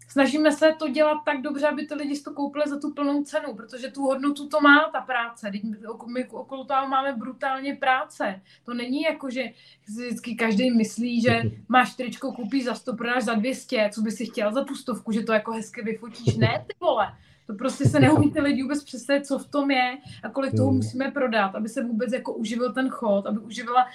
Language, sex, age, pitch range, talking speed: Slovak, female, 20-39, 220-265 Hz, 210 wpm